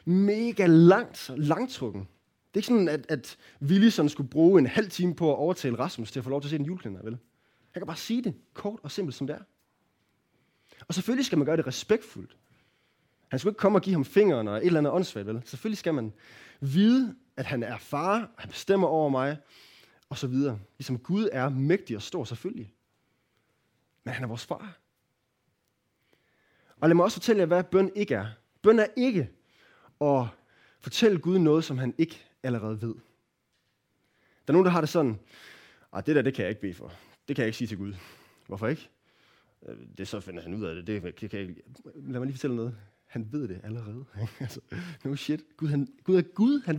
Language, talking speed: Danish, 210 wpm